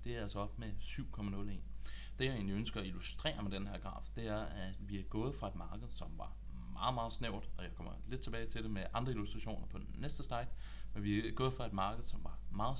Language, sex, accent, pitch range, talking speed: Danish, male, native, 95-110 Hz, 255 wpm